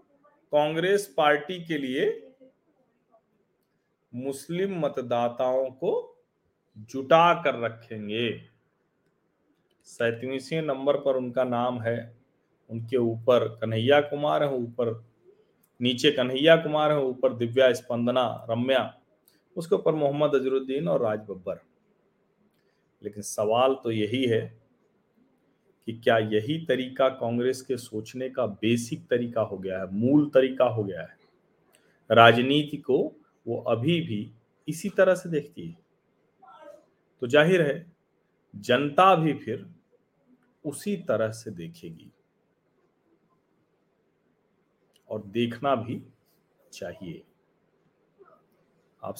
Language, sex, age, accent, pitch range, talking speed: Hindi, male, 40-59, native, 115-155 Hz, 100 wpm